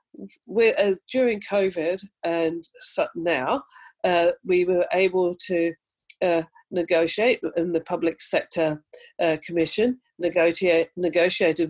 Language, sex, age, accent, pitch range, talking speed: English, female, 40-59, British, 160-200 Hz, 110 wpm